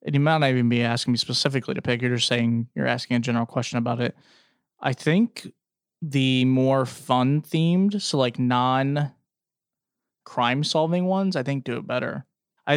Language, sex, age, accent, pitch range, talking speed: English, male, 20-39, American, 125-150 Hz, 180 wpm